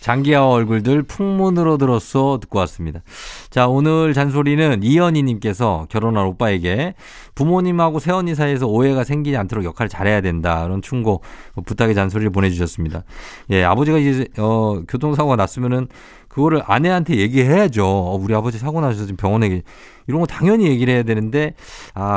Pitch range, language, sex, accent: 100-145 Hz, Korean, male, native